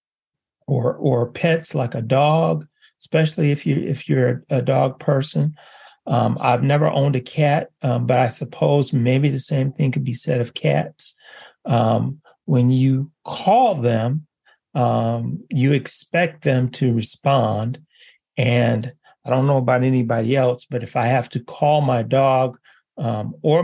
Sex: male